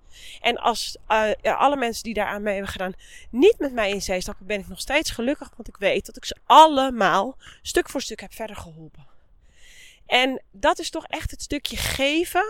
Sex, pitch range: female, 180-250 Hz